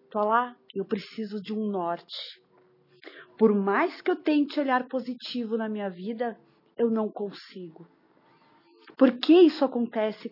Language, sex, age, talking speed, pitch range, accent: Portuguese, female, 40-59, 135 wpm, 190-250 Hz, Brazilian